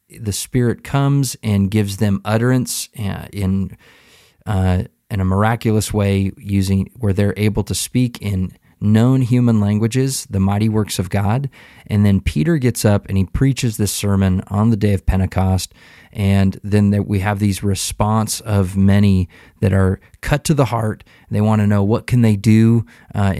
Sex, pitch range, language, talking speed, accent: male, 95-115 Hz, English, 170 wpm, American